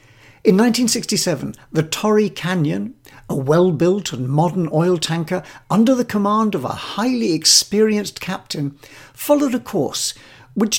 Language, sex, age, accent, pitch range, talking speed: English, male, 60-79, British, 140-205 Hz, 130 wpm